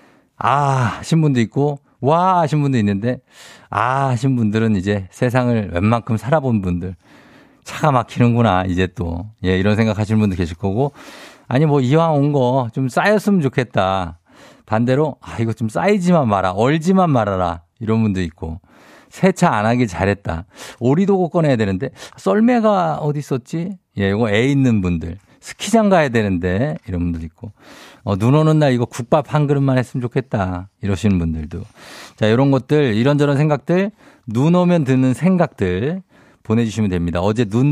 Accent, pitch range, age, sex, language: native, 100-150 Hz, 50-69, male, Korean